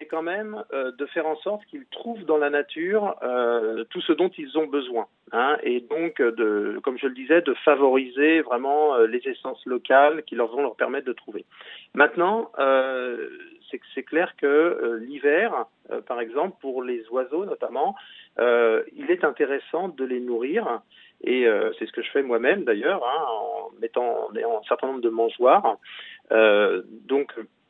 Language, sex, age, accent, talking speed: French, male, 40-59, French, 185 wpm